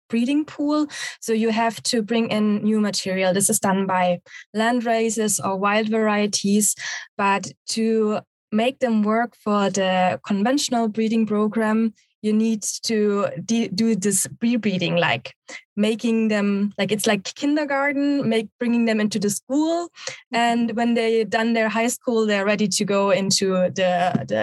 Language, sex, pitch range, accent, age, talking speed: English, female, 195-230 Hz, German, 20-39, 155 wpm